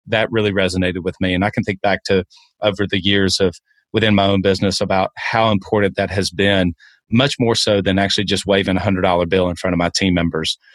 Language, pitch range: English, 100-110 Hz